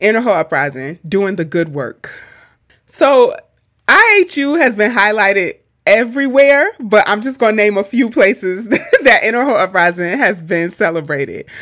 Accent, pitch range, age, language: American, 175-245 Hz, 30-49, English